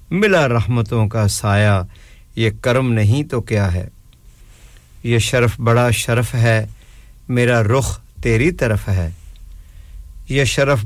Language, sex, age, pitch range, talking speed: English, male, 50-69, 110-130 Hz, 120 wpm